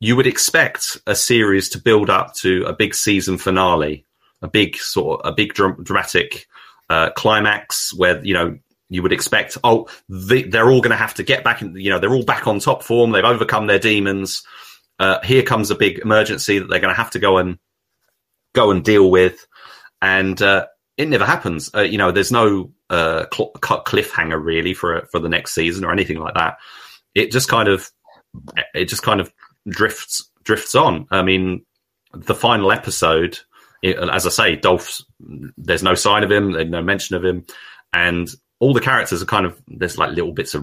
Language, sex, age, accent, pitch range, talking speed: English, male, 30-49, British, 90-115 Hz, 200 wpm